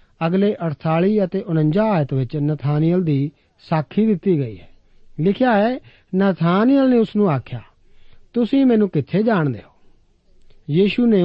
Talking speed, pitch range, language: 140 wpm, 140-205 Hz, Punjabi